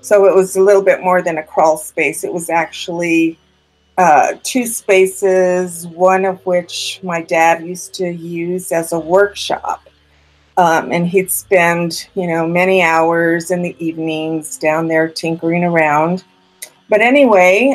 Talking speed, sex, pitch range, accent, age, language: 150 wpm, female, 180-235 Hz, American, 50-69, English